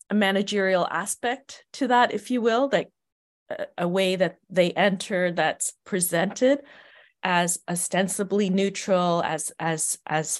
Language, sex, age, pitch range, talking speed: English, female, 40-59, 180-225 Hz, 125 wpm